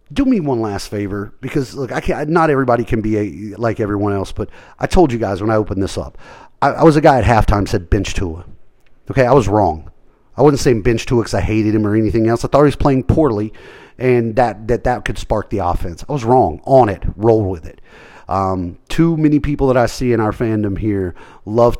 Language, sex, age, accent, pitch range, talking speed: English, male, 30-49, American, 100-120 Hz, 240 wpm